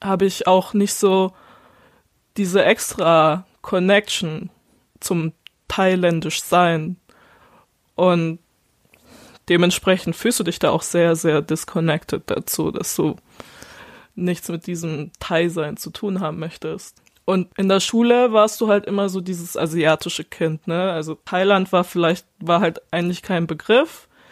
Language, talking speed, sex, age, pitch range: German, 135 wpm, female, 20-39, 165-200 Hz